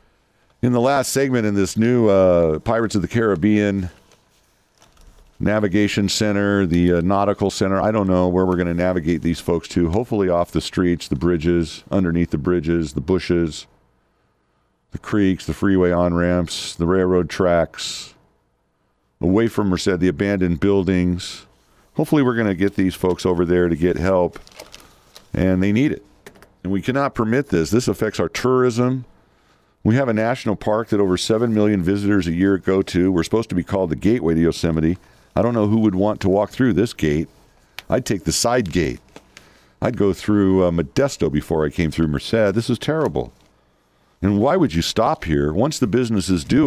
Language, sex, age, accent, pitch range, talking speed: English, male, 50-69, American, 85-105 Hz, 185 wpm